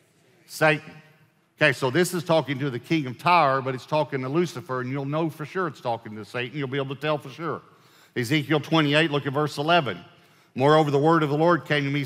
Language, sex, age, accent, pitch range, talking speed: English, male, 50-69, American, 130-165 Hz, 235 wpm